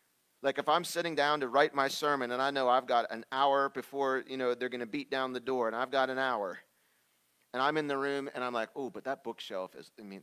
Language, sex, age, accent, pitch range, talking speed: English, male, 40-59, American, 130-180 Hz, 270 wpm